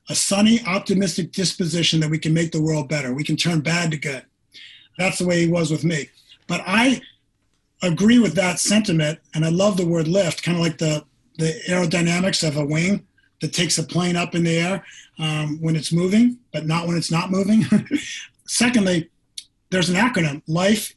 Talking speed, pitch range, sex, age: 195 wpm, 155-200 Hz, male, 40-59